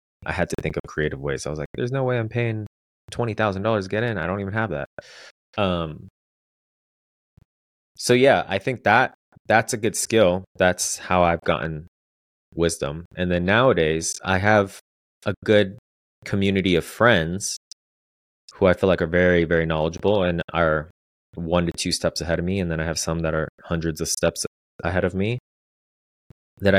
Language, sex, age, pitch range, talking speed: English, male, 20-39, 75-90 Hz, 180 wpm